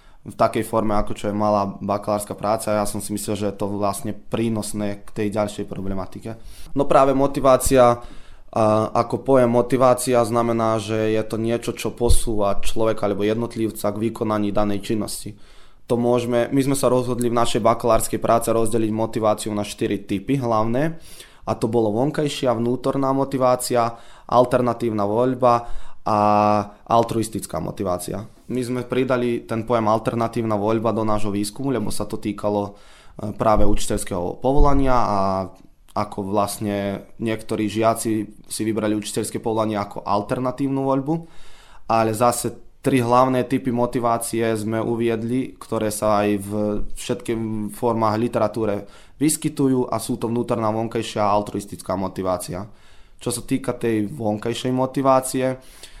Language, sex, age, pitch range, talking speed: Slovak, male, 20-39, 105-120 Hz, 135 wpm